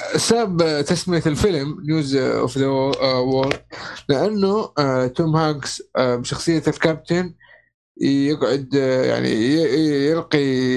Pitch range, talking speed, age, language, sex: 130-160 Hz, 85 wpm, 20-39, Arabic, male